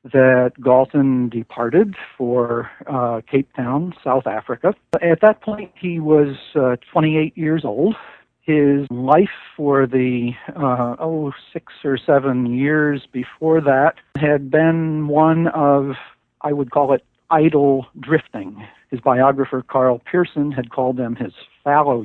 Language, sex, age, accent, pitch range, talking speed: English, male, 60-79, American, 130-155 Hz, 135 wpm